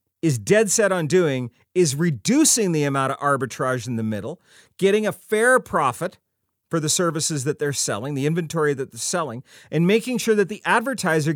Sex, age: male, 40-59